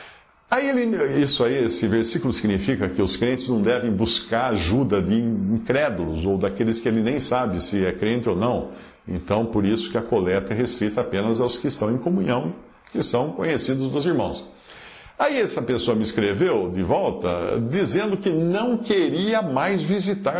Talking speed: 175 wpm